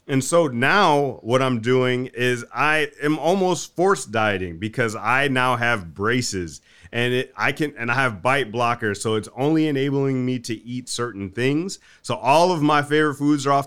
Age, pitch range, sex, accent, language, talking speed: 30-49, 120-150 Hz, male, American, English, 185 wpm